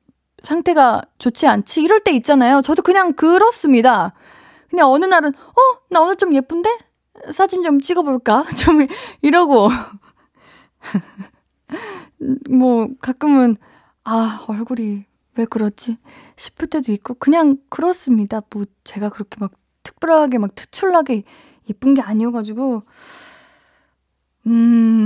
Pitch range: 215-310 Hz